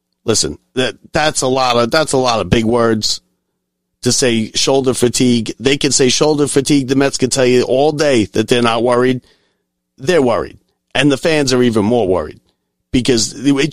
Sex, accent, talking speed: male, American, 190 wpm